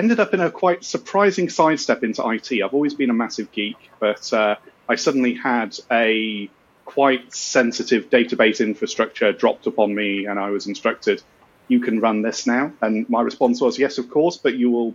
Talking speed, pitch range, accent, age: 190 wpm, 110-170 Hz, British, 30-49